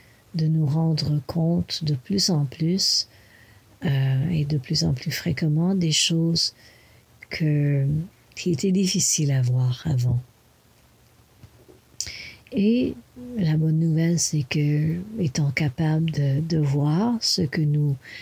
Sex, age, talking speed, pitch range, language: female, 60-79, 125 wpm, 140-170 Hz, English